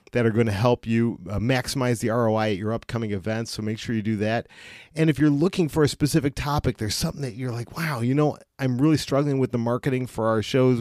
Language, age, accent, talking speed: English, 40-59, American, 245 wpm